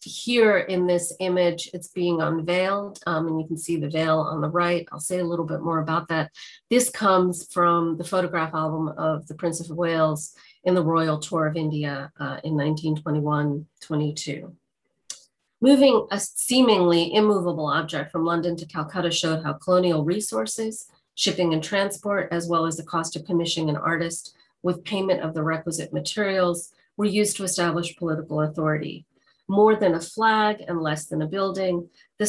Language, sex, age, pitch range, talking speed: English, female, 30-49, 160-190 Hz, 170 wpm